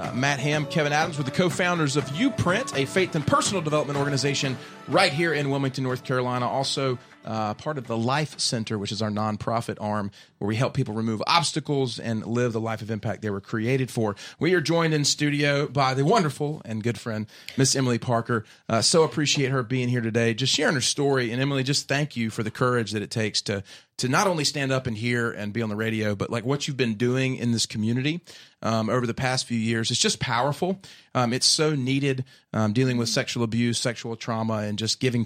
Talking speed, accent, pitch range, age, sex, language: 225 wpm, American, 115-145 Hz, 30-49, male, English